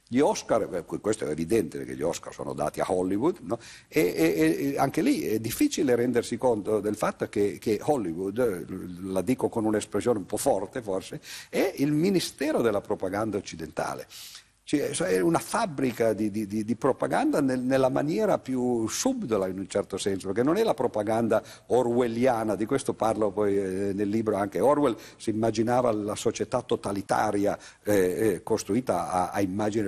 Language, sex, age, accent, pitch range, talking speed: Italian, male, 50-69, native, 100-130 Hz, 165 wpm